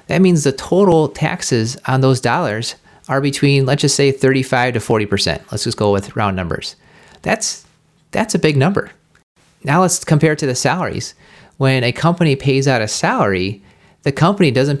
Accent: American